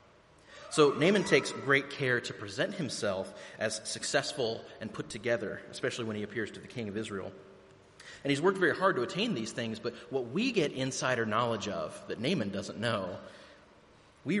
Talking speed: 180 wpm